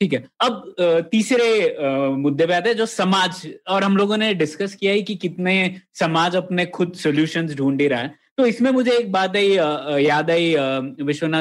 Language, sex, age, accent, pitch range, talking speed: Hindi, male, 20-39, native, 150-195 Hz, 160 wpm